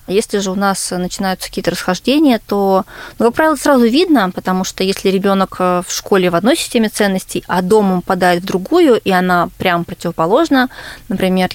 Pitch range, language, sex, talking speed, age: 175-210 Hz, Russian, female, 170 wpm, 20-39